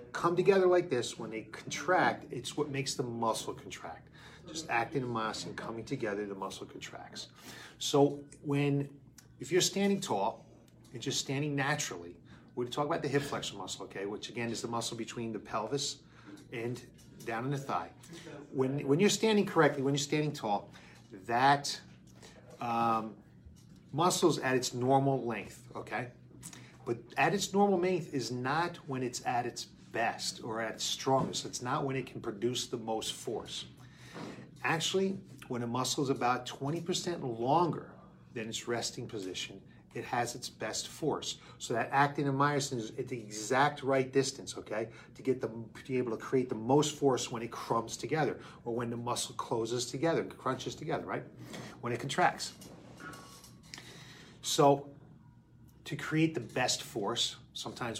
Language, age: English, 30-49